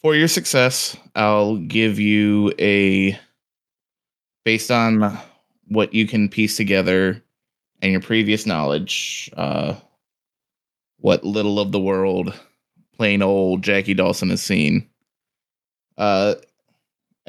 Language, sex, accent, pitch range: English, male, American, 100-135 Hz